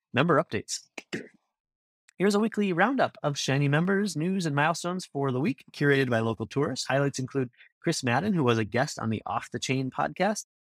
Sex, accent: male, American